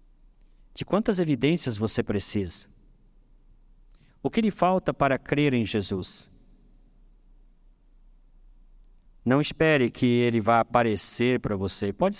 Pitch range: 110-145 Hz